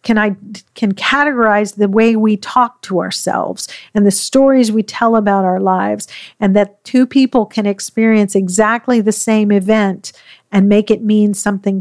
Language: English